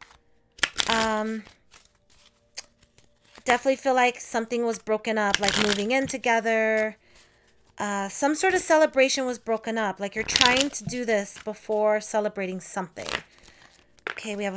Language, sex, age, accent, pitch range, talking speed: English, female, 30-49, American, 205-250 Hz, 130 wpm